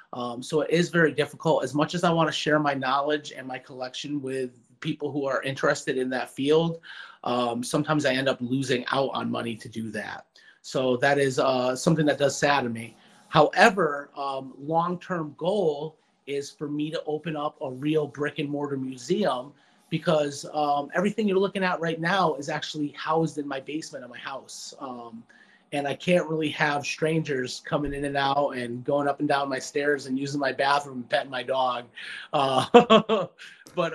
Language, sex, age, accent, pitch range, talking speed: English, male, 30-49, American, 135-165 Hz, 185 wpm